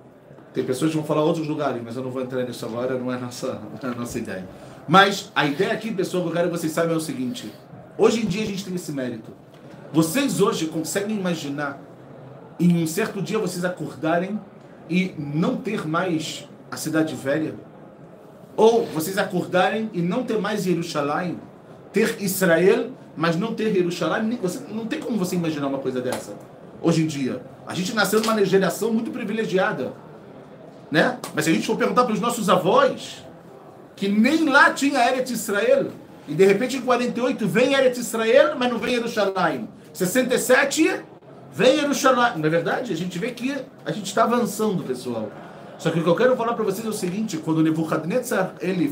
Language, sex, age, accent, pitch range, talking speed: Portuguese, male, 40-59, Brazilian, 160-220 Hz, 185 wpm